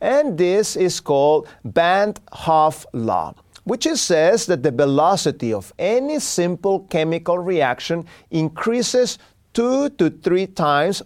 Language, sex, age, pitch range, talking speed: English, male, 40-59, 155-220 Hz, 115 wpm